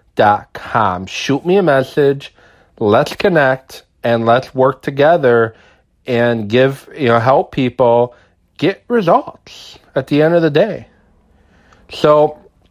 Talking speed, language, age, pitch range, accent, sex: 125 wpm, English, 30-49, 105-155 Hz, American, male